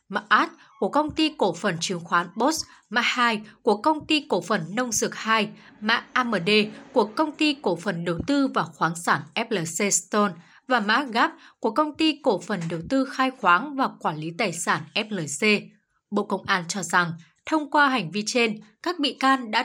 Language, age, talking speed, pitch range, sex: Vietnamese, 20-39, 200 wpm, 195-275 Hz, female